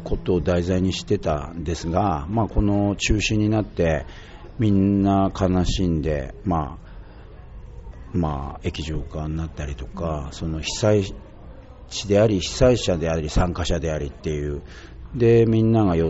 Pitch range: 80-100 Hz